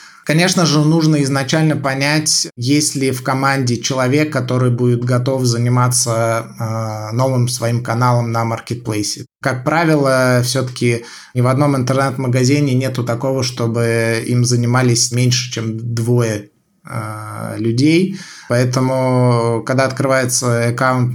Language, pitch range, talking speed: Russian, 120-135 Hz, 110 wpm